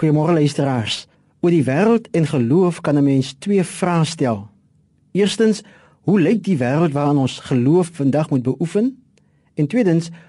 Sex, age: male, 50-69